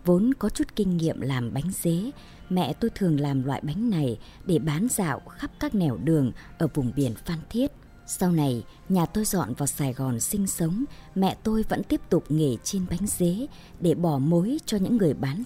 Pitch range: 150-210 Hz